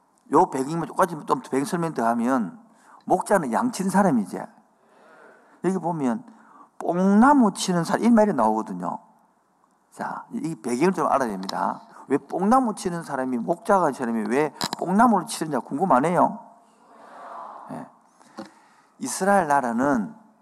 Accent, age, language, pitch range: native, 50-69, Korean, 150-225 Hz